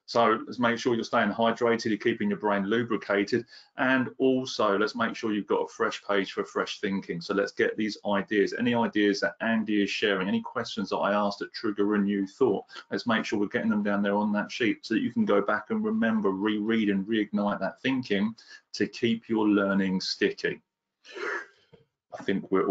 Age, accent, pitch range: 30-49, British, 100-130 Hz